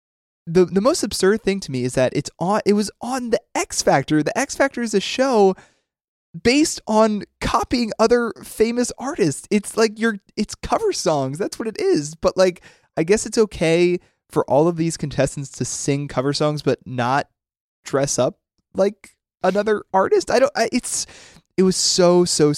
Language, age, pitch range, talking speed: English, 20-39, 120-185 Hz, 185 wpm